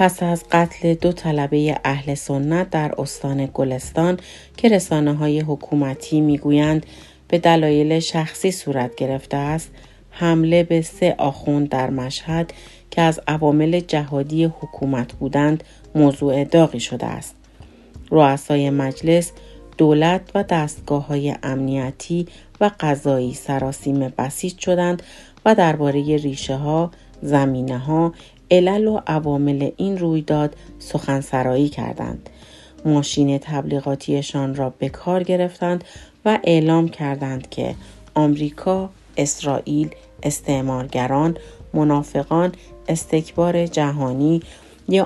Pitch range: 135-165 Hz